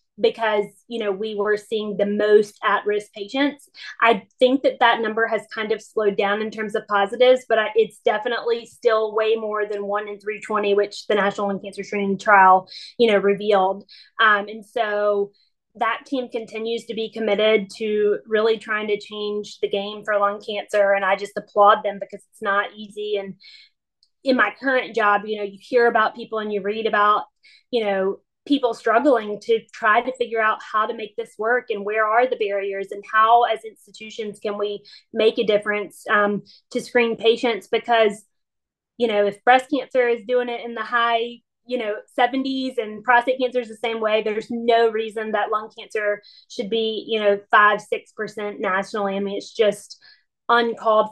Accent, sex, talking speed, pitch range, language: American, female, 185 wpm, 205-235 Hz, English